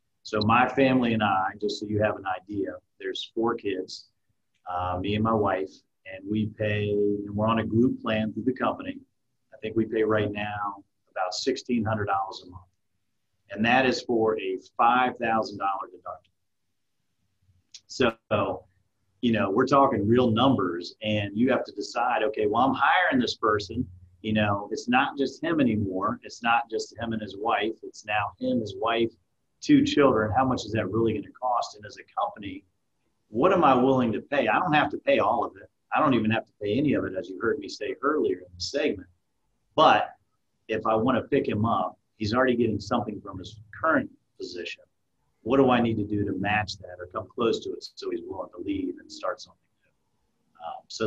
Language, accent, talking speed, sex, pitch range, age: English, American, 200 wpm, male, 105-140 Hz, 40-59